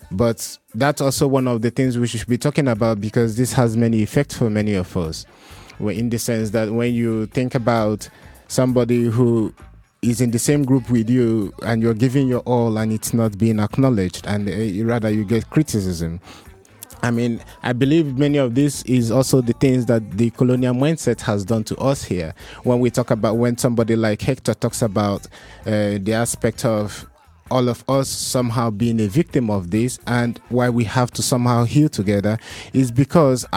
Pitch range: 110-130 Hz